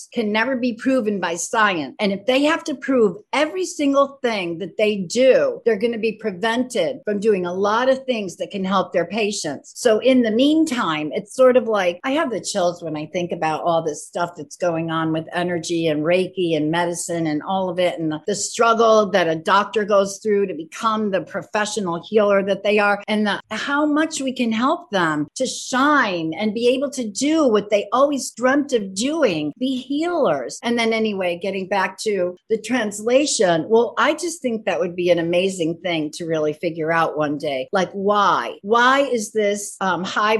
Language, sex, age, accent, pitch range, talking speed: English, female, 50-69, American, 175-240 Hz, 205 wpm